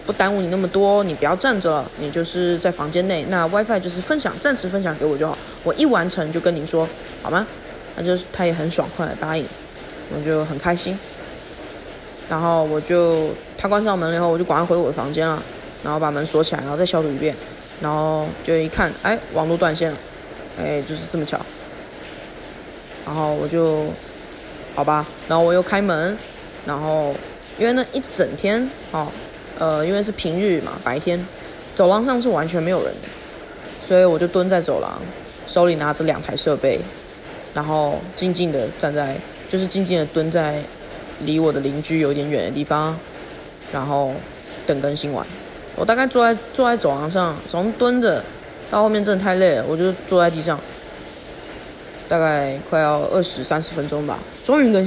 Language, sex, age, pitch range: Chinese, female, 20-39, 155-185 Hz